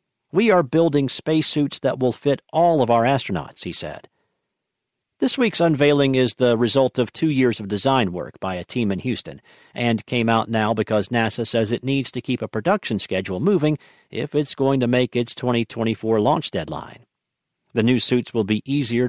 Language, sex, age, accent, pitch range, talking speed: English, male, 50-69, American, 110-140 Hz, 190 wpm